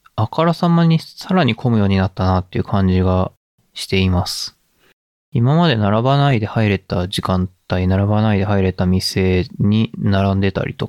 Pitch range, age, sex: 95-115 Hz, 20-39, male